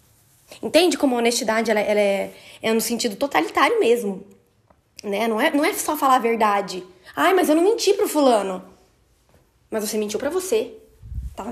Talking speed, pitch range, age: 160 wpm, 215-295 Hz, 20-39